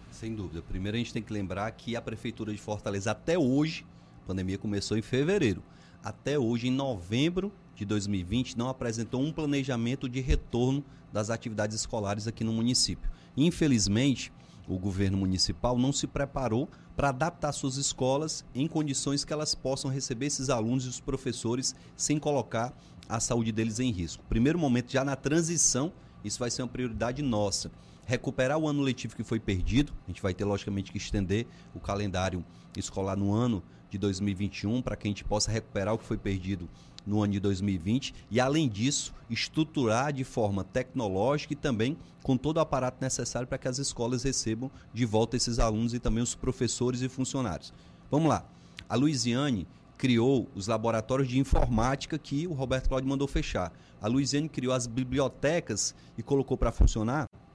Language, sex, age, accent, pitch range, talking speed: Portuguese, male, 30-49, Brazilian, 105-135 Hz, 175 wpm